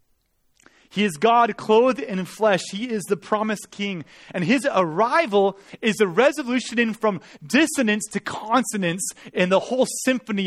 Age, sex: 30-49, male